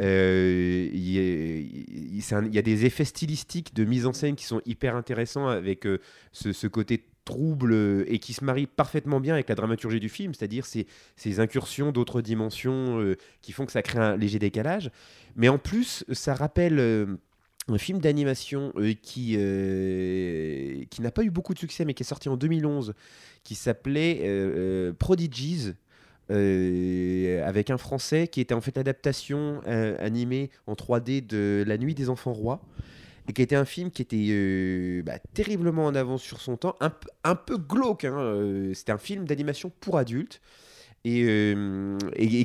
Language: French